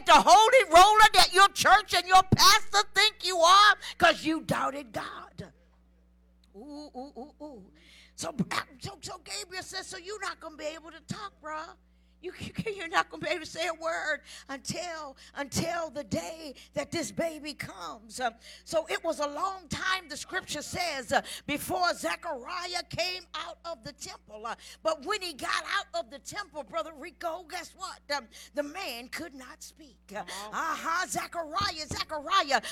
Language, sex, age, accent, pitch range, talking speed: English, female, 50-69, American, 305-390 Hz, 165 wpm